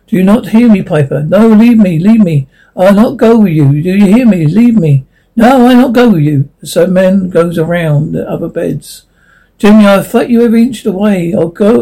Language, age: English, 60-79